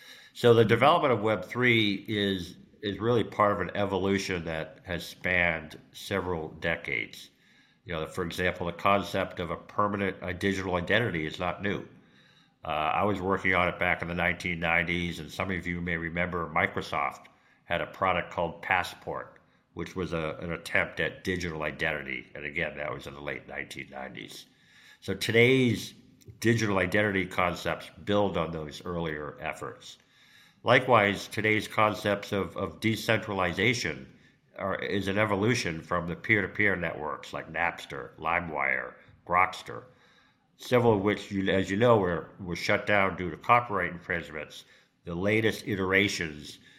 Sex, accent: male, American